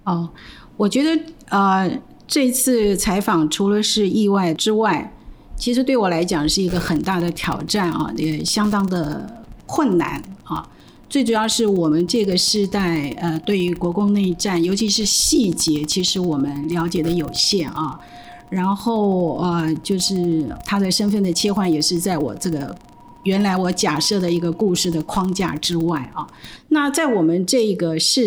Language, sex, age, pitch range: Chinese, female, 50-69, 170-205 Hz